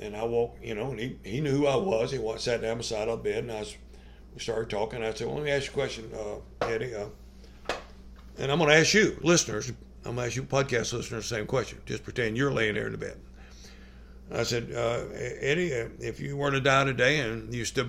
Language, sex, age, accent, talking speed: English, male, 60-79, American, 250 wpm